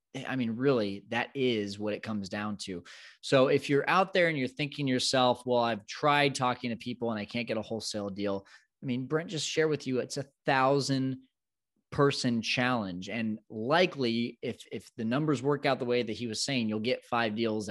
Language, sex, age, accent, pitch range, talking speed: English, male, 20-39, American, 110-140 Hz, 215 wpm